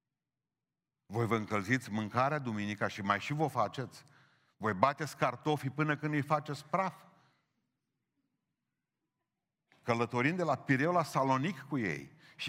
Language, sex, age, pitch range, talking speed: Romanian, male, 50-69, 115-160 Hz, 135 wpm